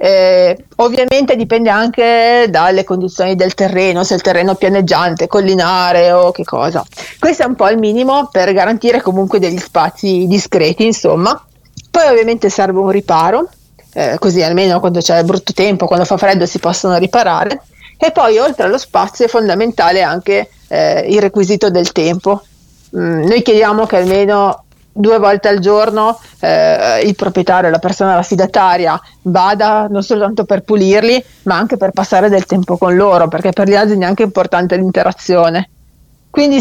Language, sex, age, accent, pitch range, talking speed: Italian, female, 40-59, native, 180-215 Hz, 160 wpm